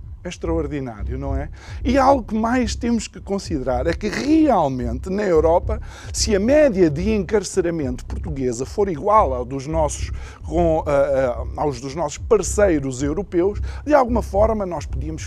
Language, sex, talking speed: Portuguese, male, 140 wpm